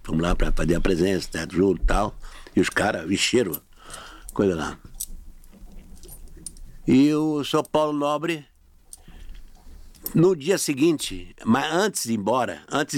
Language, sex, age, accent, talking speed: Portuguese, male, 60-79, Brazilian, 135 wpm